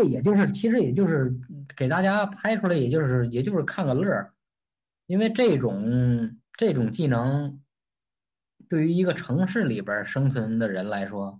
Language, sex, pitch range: Chinese, male, 115-155 Hz